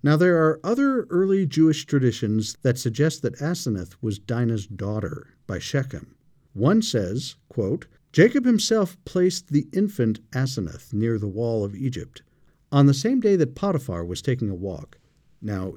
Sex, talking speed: male, 155 wpm